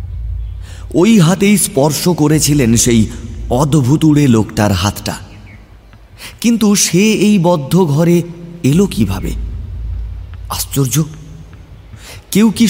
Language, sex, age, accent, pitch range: Bengali, male, 30-49, native, 105-175 Hz